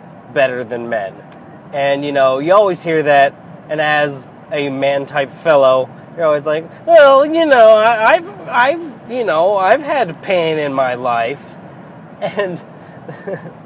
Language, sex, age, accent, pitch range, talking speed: English, male, 20-39, American, 140-190 Hz, 150 wpm